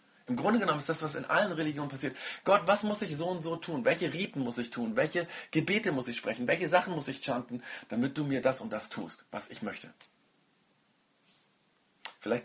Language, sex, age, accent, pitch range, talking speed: German, male, 40-59, German, 120-160 Hz, 210 wpm